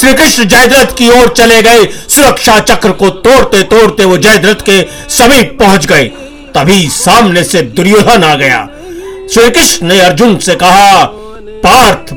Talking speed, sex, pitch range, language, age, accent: 155 wpm, male, 190-240 Hz, Hindi, 50-69, native